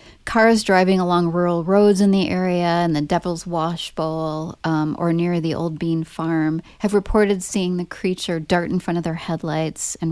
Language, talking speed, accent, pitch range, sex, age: English, 185 wpm, American, 160-185 Hz, female, 30-49